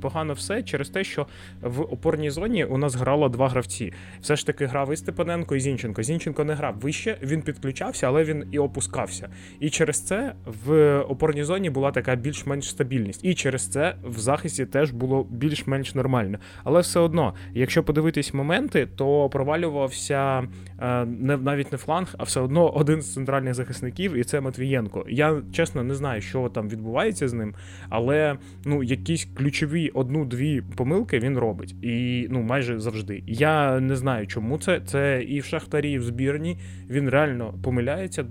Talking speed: 170 wpm